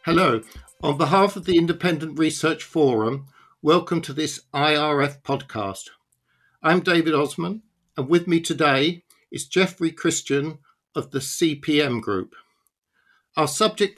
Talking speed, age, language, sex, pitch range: 125 wpm, 60-79, English, male, 140-170 Hz